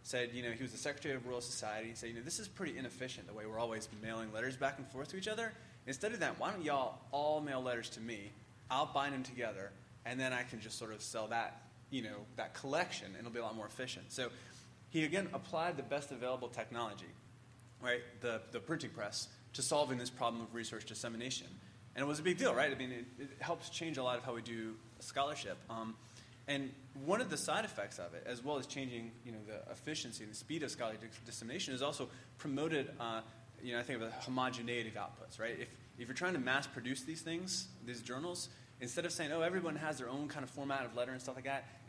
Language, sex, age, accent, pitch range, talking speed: English, male, 20-39, American, 115-135 Hz, 245 wpm